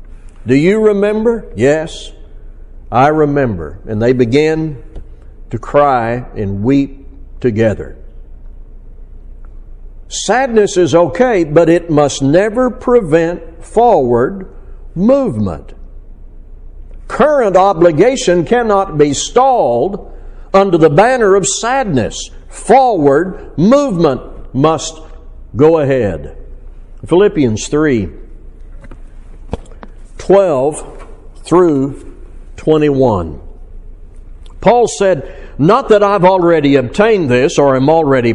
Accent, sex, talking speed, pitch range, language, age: American, male, 85 wpm, 115-185 Hz, English, 60-79